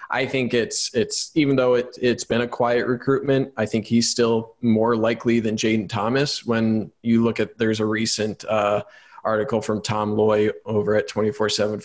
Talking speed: 195 wpm